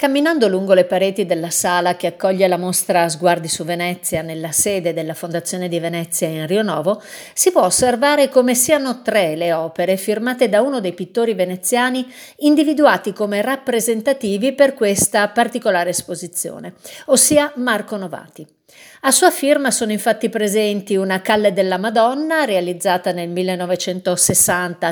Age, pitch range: 50-69, 185-255 Hz